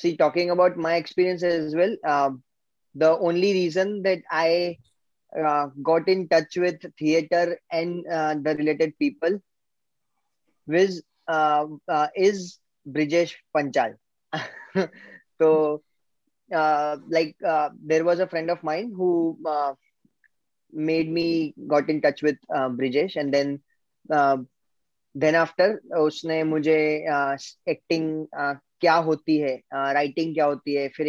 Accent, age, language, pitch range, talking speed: native, 20-39, Hindi, 150-175 Hz, 140 wpm